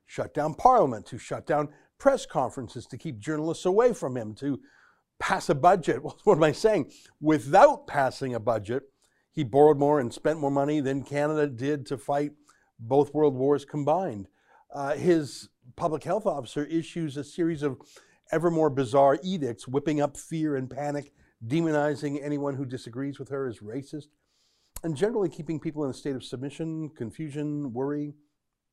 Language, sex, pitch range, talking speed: English, male, 135-160 Hz, 165 wpm